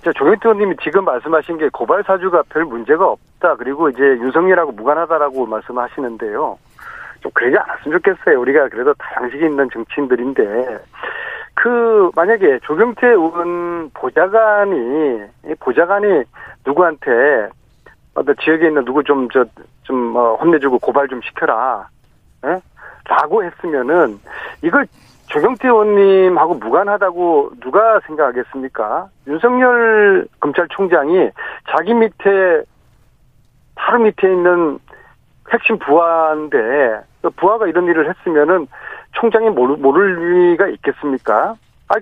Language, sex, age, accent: Korean, male, 40-59, native